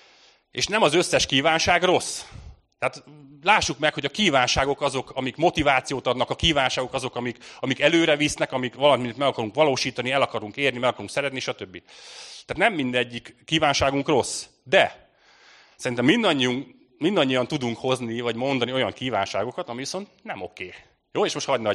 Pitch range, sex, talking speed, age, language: 110-140 Hz, male, 155 wpm, 30-49, Hungarian